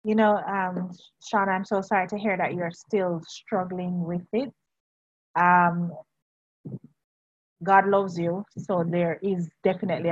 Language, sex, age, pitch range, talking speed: English, female, 30-49, 165-200 Hz, 135 wpm